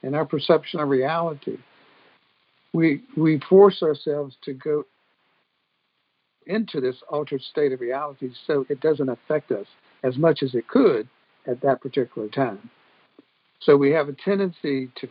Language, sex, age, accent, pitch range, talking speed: English, male, 60-79, American, 135-170 Hz, 145 wpm